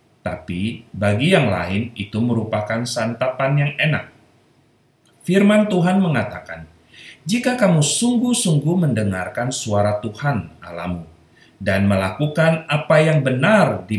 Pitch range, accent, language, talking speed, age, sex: 100-155 Hz, native, Indonesian, 105 wpm, 30-49, male